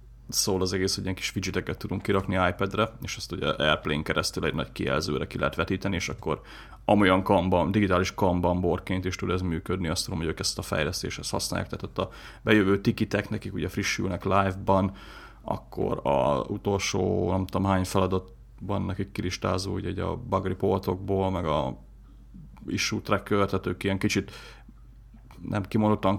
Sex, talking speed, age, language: male, 160 wpm, 30-49, Hungarian